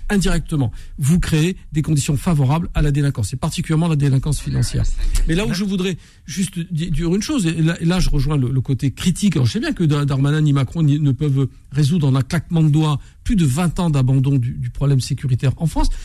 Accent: French